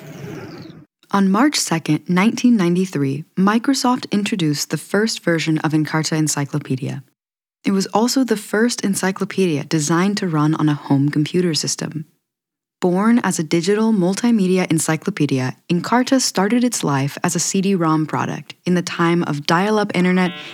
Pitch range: 155-200 Hz